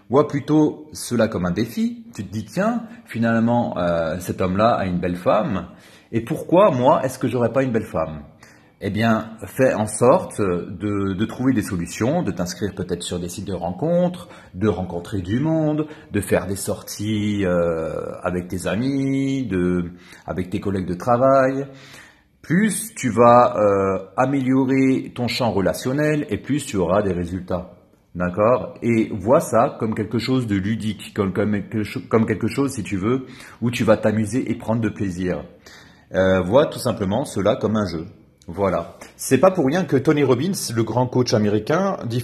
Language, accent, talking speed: French, French, 175 wpm